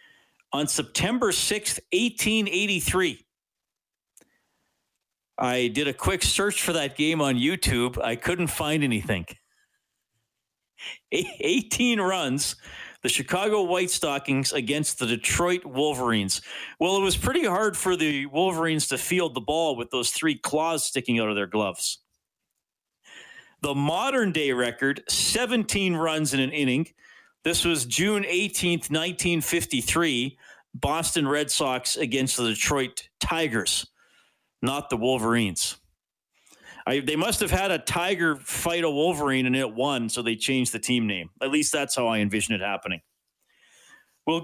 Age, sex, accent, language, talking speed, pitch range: 40-59, male, American, English, 135 wpm, 125-175 Hz